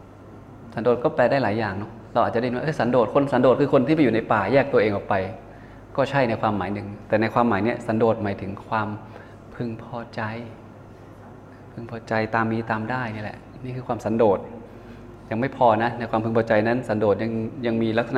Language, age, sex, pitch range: Thai, 20-39, male, 105-120 Hz